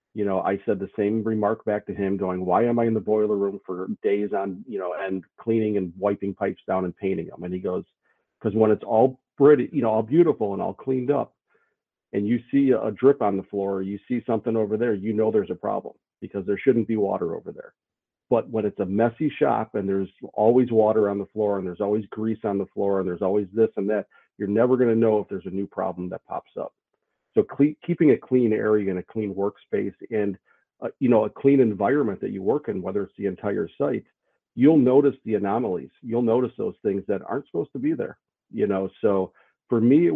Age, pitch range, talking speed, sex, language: 40-59, 100-125 Hz, 235 wpm, male, English